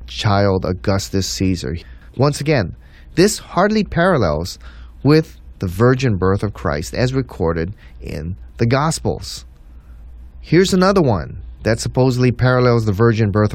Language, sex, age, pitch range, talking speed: English, male, 30-49, 90-145 Hz, 125 wpm